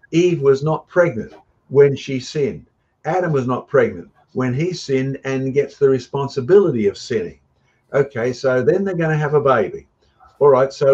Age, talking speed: 50-69, 175 wpm